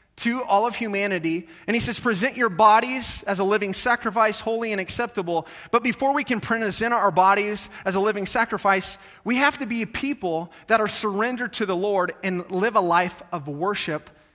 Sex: male